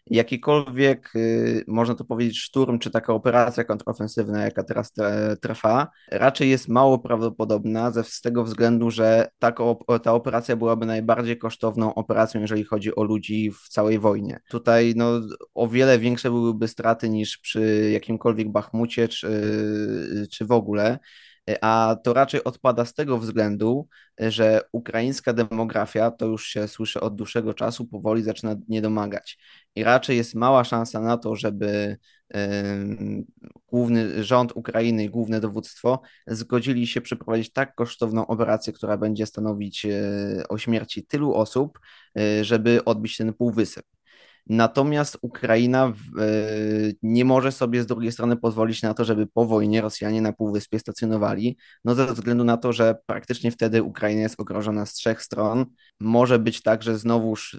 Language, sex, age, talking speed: Polish, male, 20-39, 145 wpm